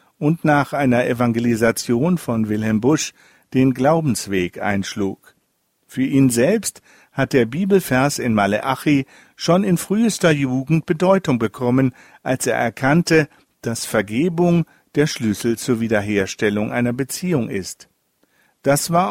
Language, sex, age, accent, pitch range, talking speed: German, male, 50-69, German, 115-160 Hz, 120 wpm